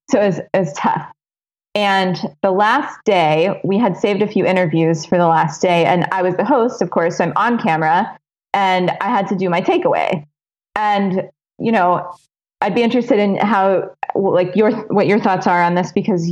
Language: English